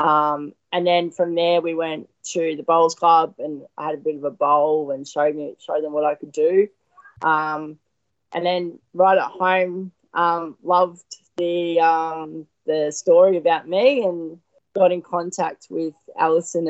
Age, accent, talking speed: 20-39, Australian, 175 wpm